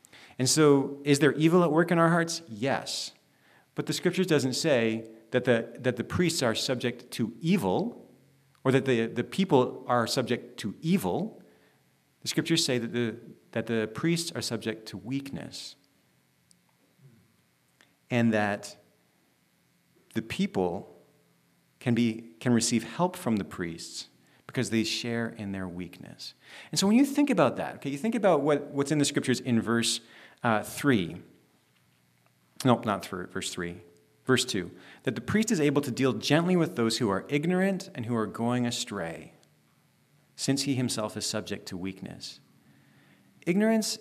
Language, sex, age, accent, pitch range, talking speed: English, male, 40-59, American, 110-145 Hz, 160 wpm